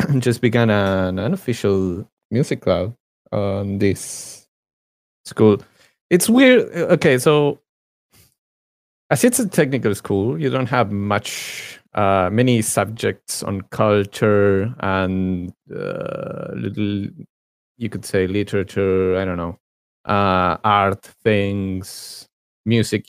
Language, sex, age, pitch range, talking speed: English, male, 30-49, 95-125 Hz, 110 wpm